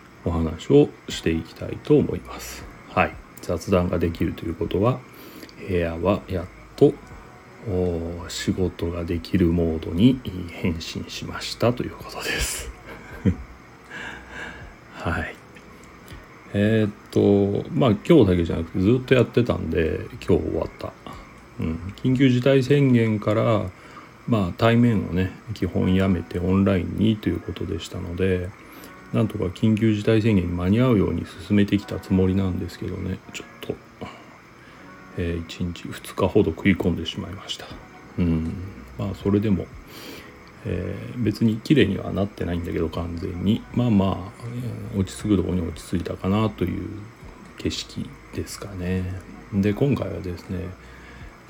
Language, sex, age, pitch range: Japanese, male, 40-59, 90-110 Hz